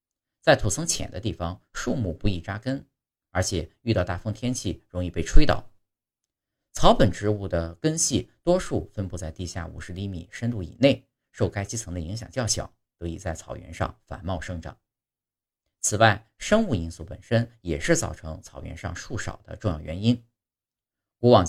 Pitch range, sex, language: 85-115 Hz, male, Chinese